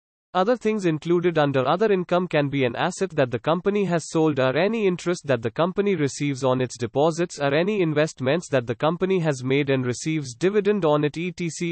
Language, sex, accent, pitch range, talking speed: English, male, Indian, 140-185 Hz, 200 wpm